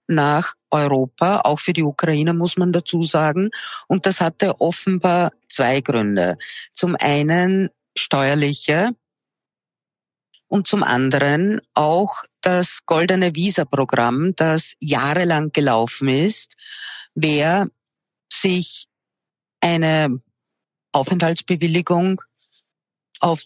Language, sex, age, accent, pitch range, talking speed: German, female, 50-69, Austrian, 135-170 Hz, 90 wpm